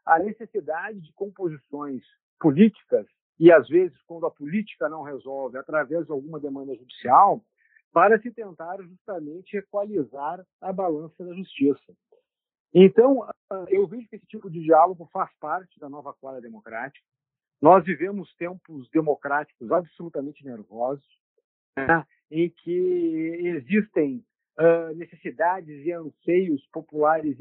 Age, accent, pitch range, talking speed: 50-69, Brazilian, 155-210 Hz, 125 wpm